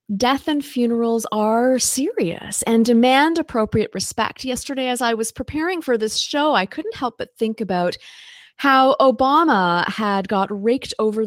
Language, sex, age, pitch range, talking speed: English, female, 30-49, 180-255 Hz, 155 wpm